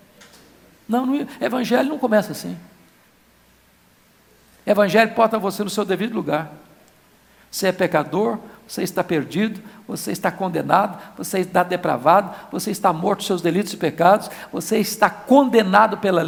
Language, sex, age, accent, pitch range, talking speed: Portuguese, male, 60-79, Brazilian, 180-225 Hz, 135 wpm